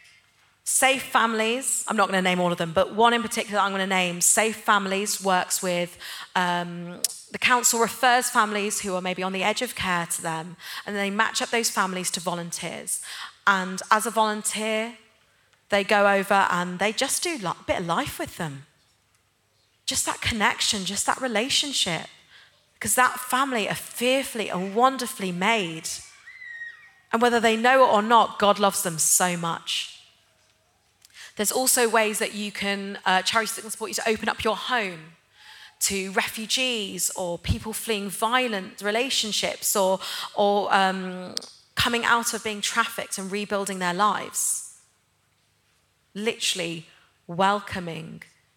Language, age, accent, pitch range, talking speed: English, 30-49, British, 180-225 Hz, 155 wpm